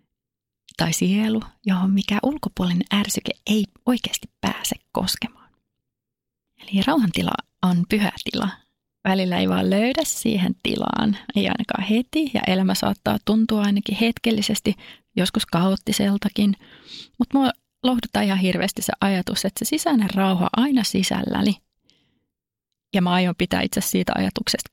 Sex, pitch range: female, 195-230 Hz